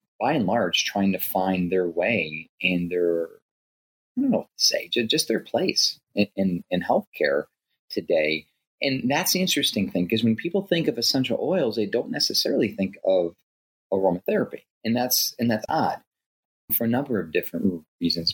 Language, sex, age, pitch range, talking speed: English, male, 30-49, 90-150 Hz, 175 wpm